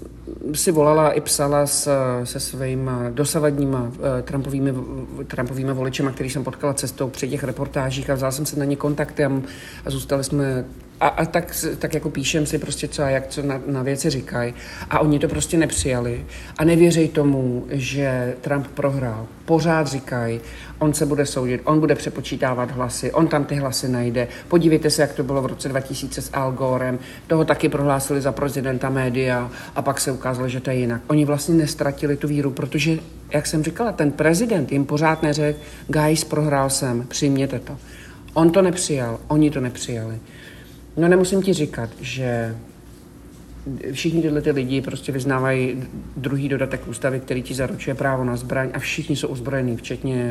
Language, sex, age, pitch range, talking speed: Czech, male, 50-69, 130-150 Hz, 170 wpm